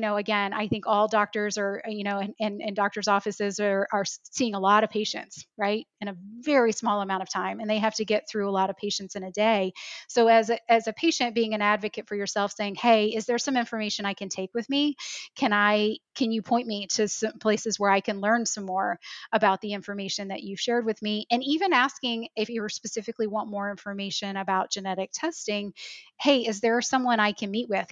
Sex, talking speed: female, 235 wpm